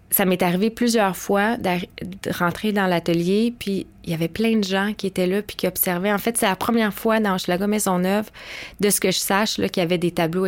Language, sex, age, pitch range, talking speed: French, female, 20-39, 180-210 Hz, 240 wpm